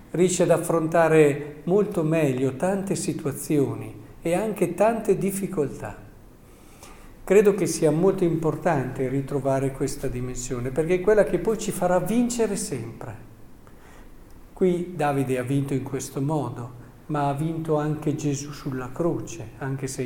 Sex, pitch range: male, 135-180 Hz